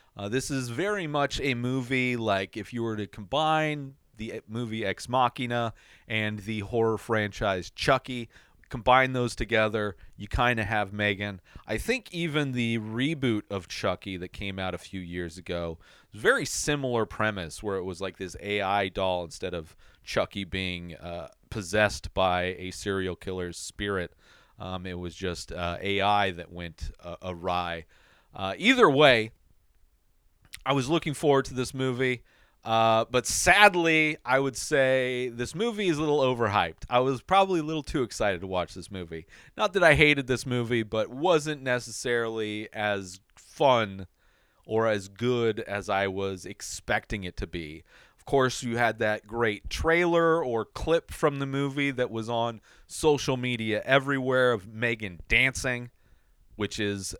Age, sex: 40-59, male